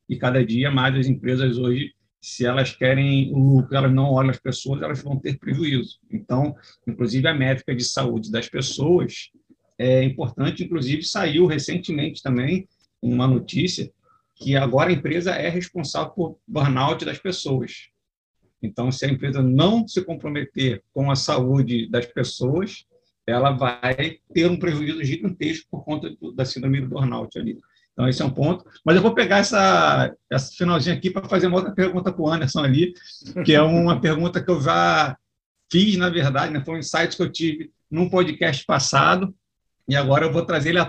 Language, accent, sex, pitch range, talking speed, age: Portuguese, Brazilian, male, 130-175 Hz, 180 wpm, 50-69